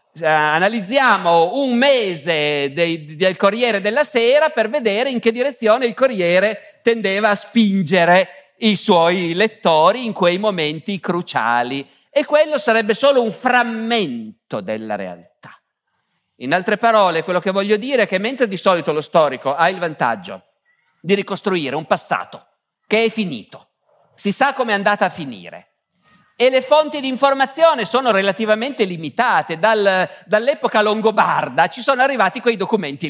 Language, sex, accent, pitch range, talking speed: Italian, male, native, 170-245 Hz, 145 wpm